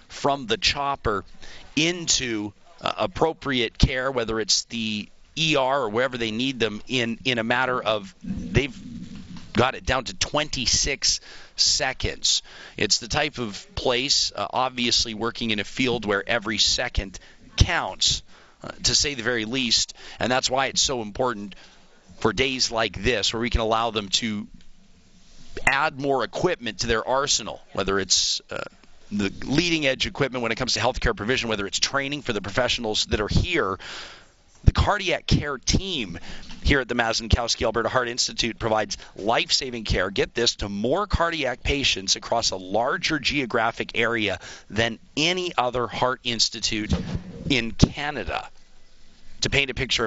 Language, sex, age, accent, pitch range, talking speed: English, male, 40-59, American, 110-135 Hz, 155 wpm